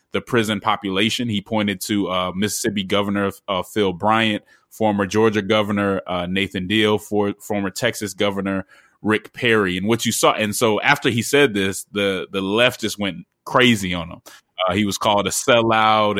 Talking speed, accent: 180 wpm, American